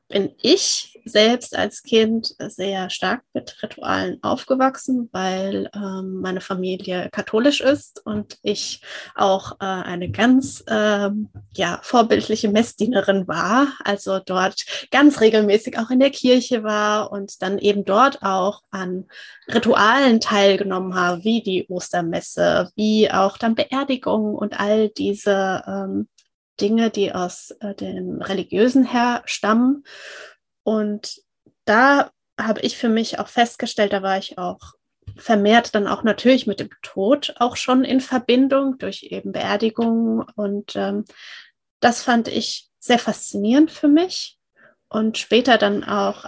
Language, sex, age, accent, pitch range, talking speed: German, female, 20-39, German, 195-245 Hz, 135 wpm